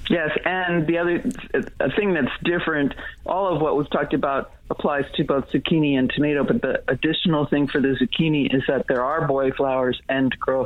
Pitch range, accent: 130-150 Hz, American